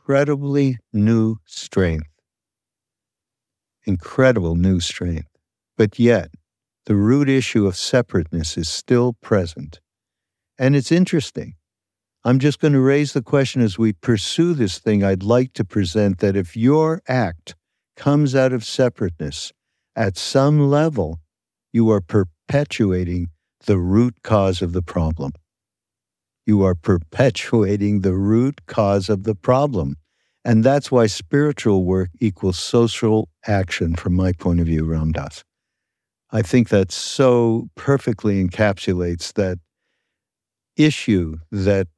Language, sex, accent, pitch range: English, male, American, 95-125 Hz